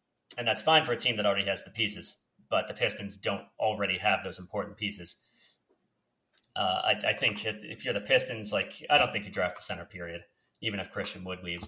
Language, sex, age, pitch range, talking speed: English, male, 30-49, 90-105 Hz, 220 wpm